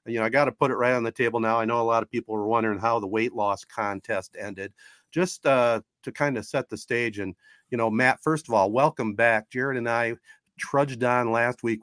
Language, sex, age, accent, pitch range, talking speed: English, male, 50-69, American, 110-140 Hz, 255 wpm